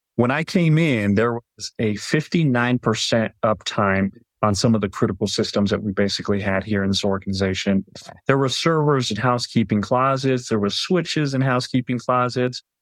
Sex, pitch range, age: male, 105-125 Hz, 30-49